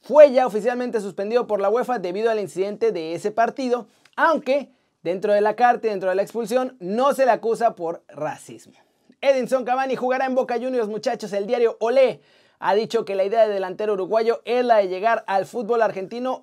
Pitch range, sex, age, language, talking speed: 210-260 Hz, male, 30-49, Spanish, 195 wpm